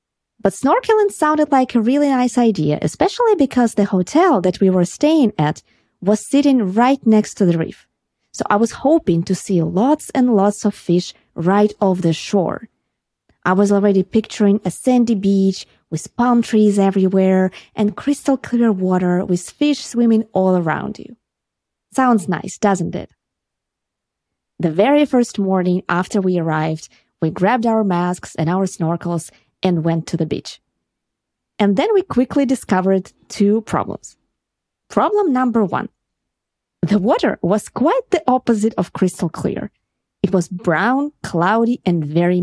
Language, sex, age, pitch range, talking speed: English, female, 20-39, 180-235 Hz, 155 wpm